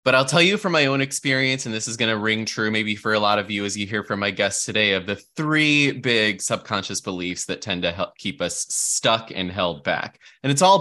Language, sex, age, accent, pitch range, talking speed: English, male, 20-39, American, 95-130 Hz, 260 wpm